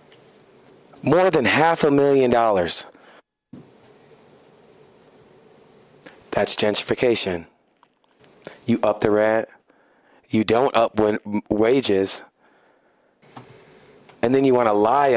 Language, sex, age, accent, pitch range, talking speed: English, male, 30-49, American, 110-135 Hz, 85 wpm